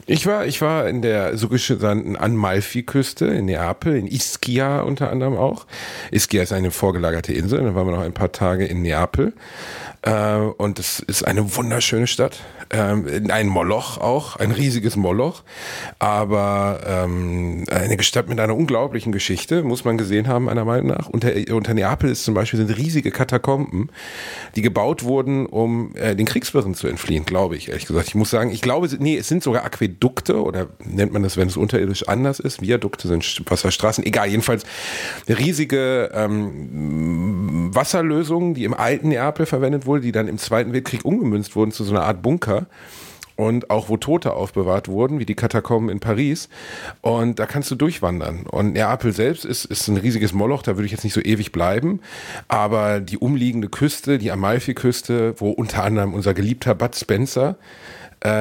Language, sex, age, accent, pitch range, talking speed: German, male, 40-59, German, 100-125 Hz, 180 wpm